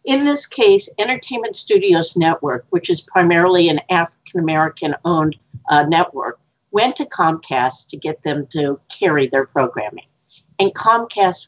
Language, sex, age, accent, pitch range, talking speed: English, female, 50-69, American, 155-220 Hz, 125 wpm